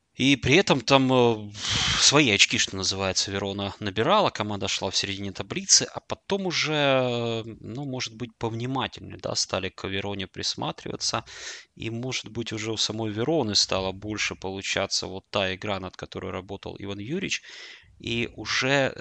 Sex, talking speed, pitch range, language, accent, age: male, 150 wpm, 95-115 Hz, Russian, native, 20-39